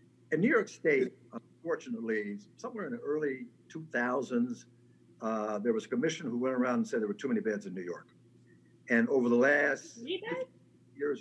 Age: 50-69